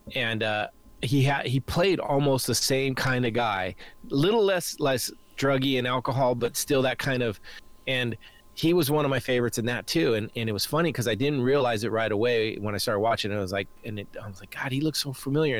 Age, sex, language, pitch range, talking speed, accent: 30-49, male, English, 105-135 Hz, 240 wpm, American